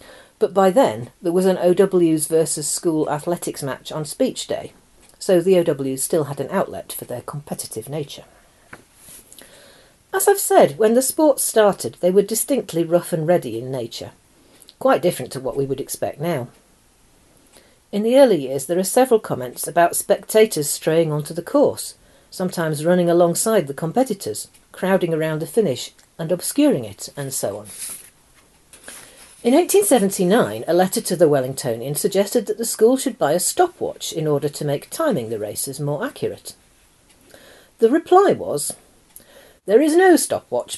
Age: 50-69